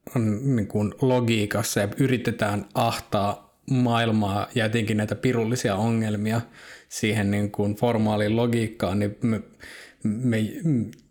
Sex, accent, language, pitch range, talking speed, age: male, native, Finnish, 105-120 Hz, 115 wpm, 20-39